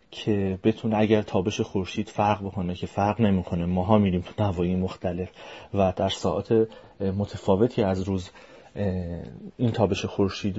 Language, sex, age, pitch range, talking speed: Persian, male, 30-49, 95-115 Hz, 135 wpm